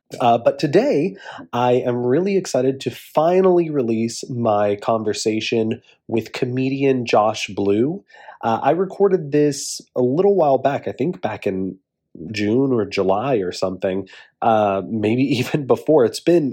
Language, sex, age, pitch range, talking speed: English, male, 30-49, 105-130 Hz, 140 wpm